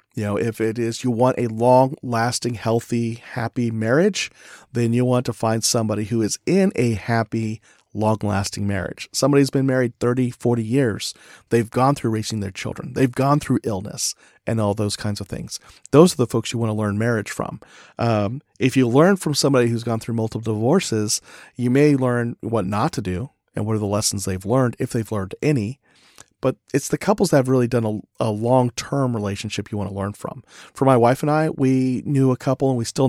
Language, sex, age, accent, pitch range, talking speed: English, male, 40-59, American, 110-135 Hz, 210 wpm